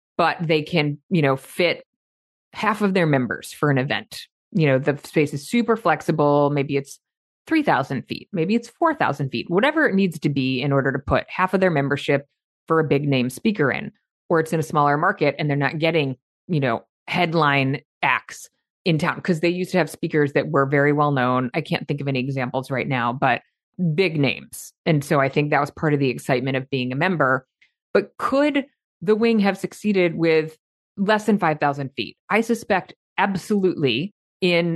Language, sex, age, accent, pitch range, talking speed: English, female, 30-49, American, 140-175 Hz, 200 wpm